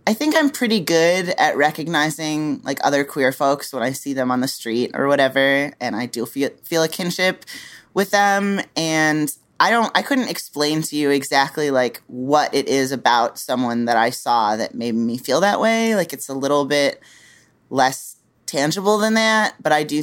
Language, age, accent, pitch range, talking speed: English, 20-39, American, 130-165 Hz, 195 wpm